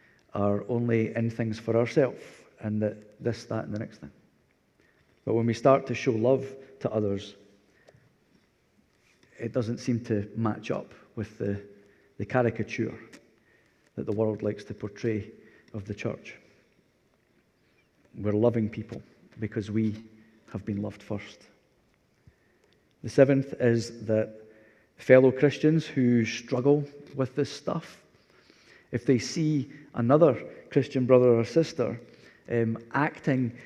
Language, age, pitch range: English, 40-59, 110-135 Hz